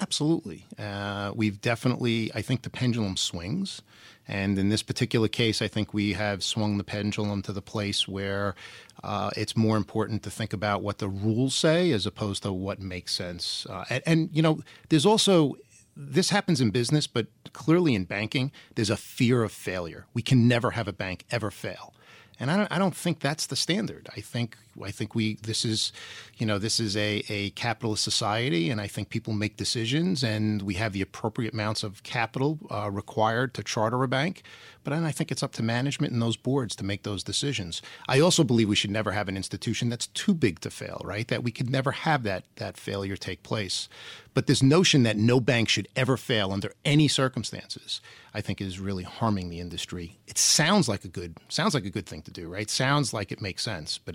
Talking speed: 210 wpm